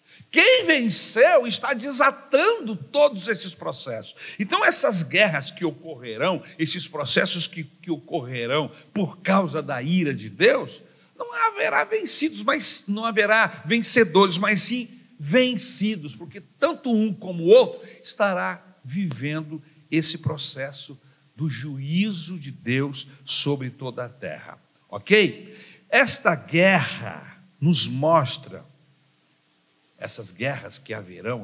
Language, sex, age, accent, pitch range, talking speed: Portuguese, male, 60-79, Brazilian, 145-200 Hz, 115 wpm